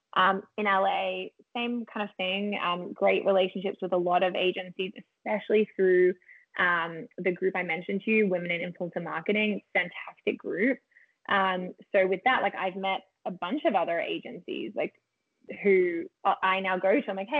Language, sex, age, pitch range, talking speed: English, female, 20-39, 190-240 Hz, 170 wpm